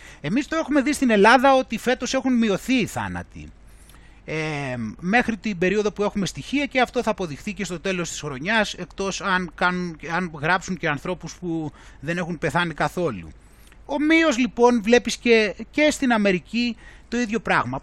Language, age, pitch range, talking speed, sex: Greek, 30-49, 175-250 Hz, 170 wpm, male